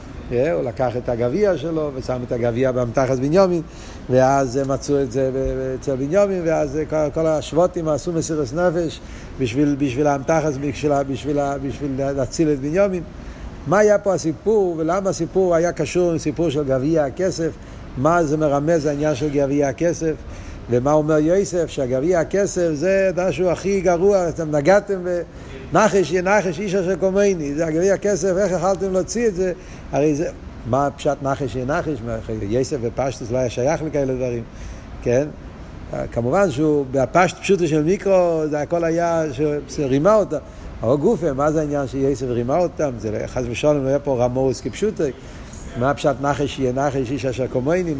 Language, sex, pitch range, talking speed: Hebrew, male, 130-175 Hz, 155 wpm